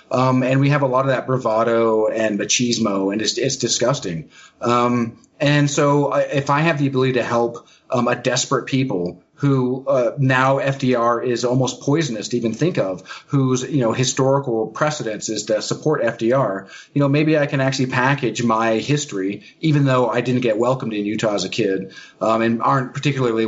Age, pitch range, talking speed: 30-49, 115-135 Hz, 190 wpm